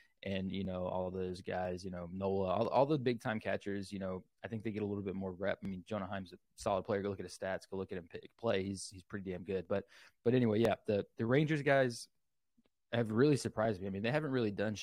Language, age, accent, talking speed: English, 20-39, American, 270 wpm